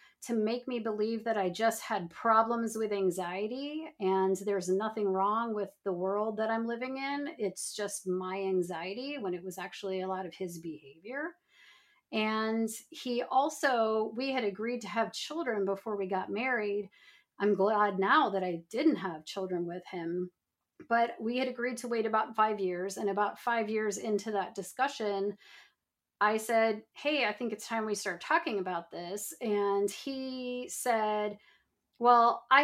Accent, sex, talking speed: American, female, 165 wpm